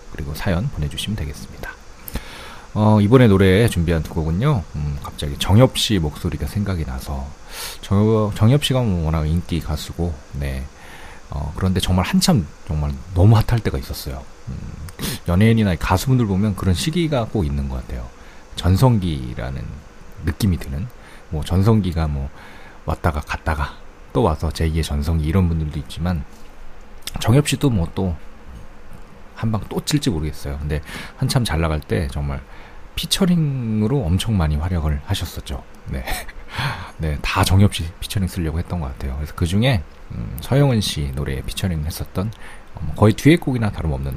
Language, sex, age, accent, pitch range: Korean, male, 40-59, native, 75-105 Hz